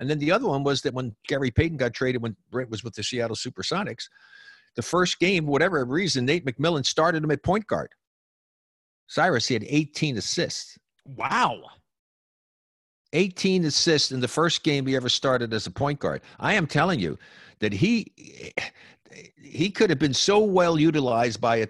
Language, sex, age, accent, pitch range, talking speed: English, male, 50-69, American, 90-140 Hz, 180 wpm